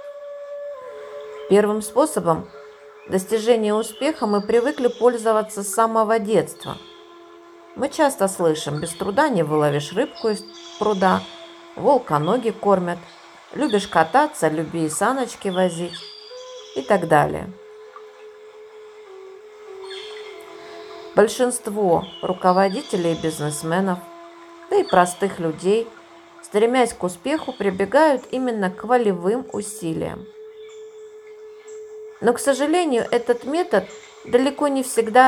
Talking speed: 95 wpm